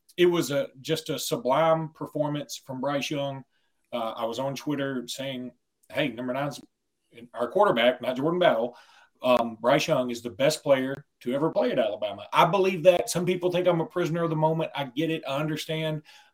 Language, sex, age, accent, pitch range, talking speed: English, male, 40-59, American, 125-155 Hz, 195 wpm